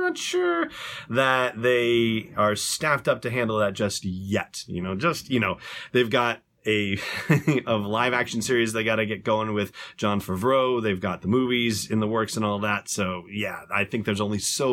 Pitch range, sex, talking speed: 105-130 Hz, male, 195 wpm